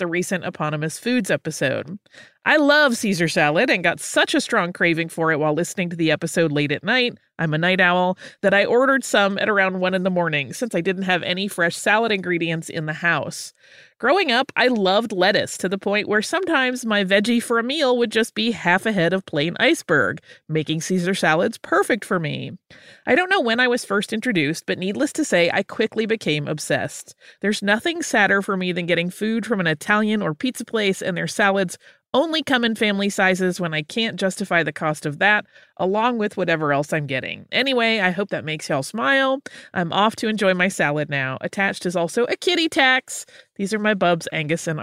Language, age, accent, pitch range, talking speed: English, 30-49, American, 170-225 Hz, 215 wpm